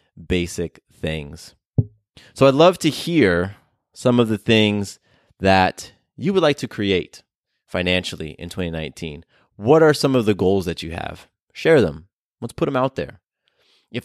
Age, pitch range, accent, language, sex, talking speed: 20-39, 95-125 Hz, American, English, male, 160 wpm